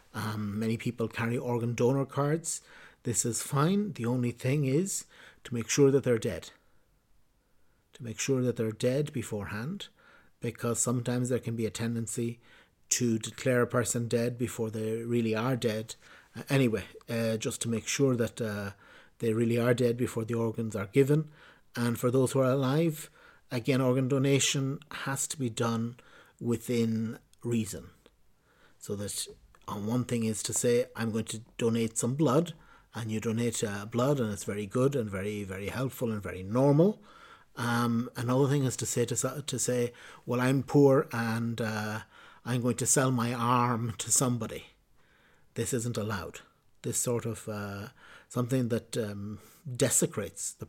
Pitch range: 110-130 Hz